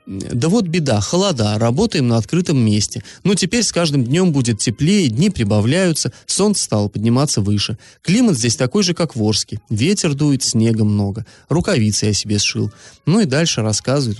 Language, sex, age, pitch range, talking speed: Russian, male, 30-49, 115-155 Hz, 175 wpm